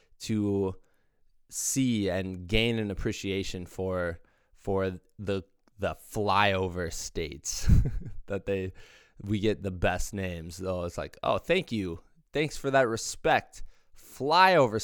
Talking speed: 120 wpm